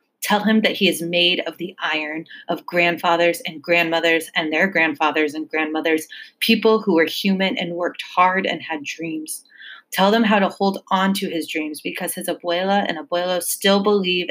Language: English